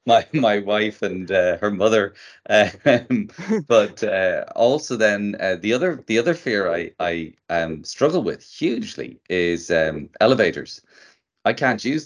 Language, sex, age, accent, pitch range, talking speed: English, male, 30-49, Irish, 85-100 Hz, 150 wpm